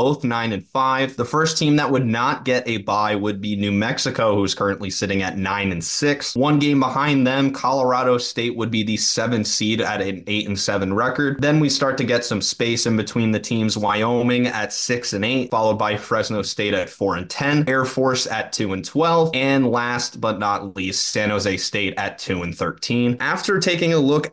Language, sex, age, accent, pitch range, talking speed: English, male, 20-39, American, 105-125 Hz, 215 wpm